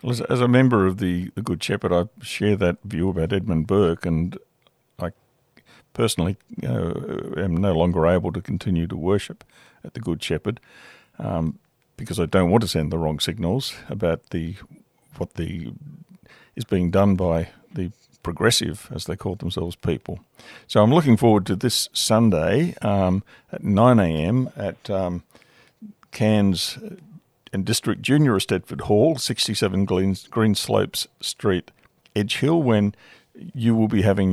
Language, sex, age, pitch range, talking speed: English, male, 50-69, 95-120 Hz, 155 wpm